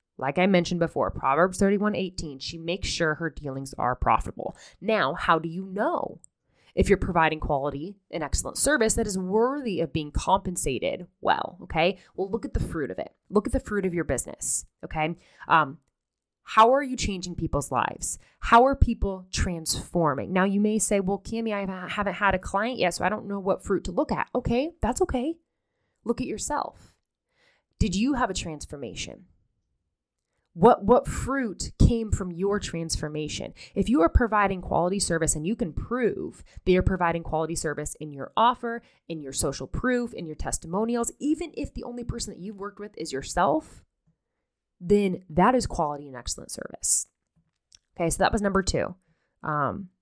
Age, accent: 20-39, American